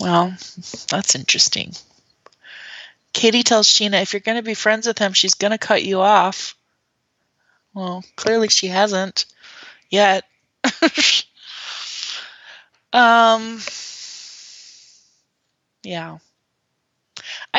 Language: English